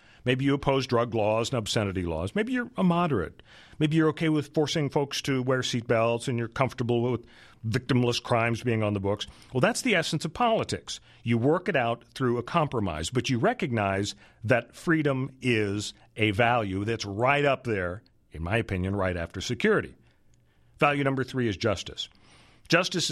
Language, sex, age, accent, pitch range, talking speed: English, male, 50-69, American, 110-150 Hz, 175 wpm